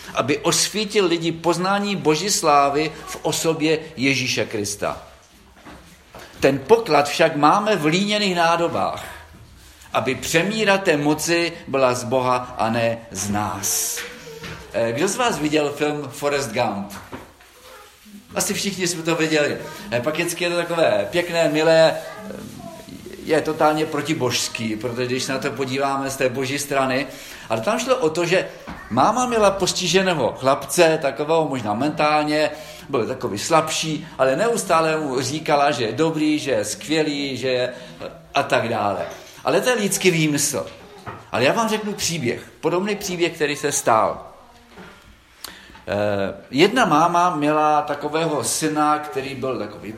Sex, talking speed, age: male, 135 wpm, 50-69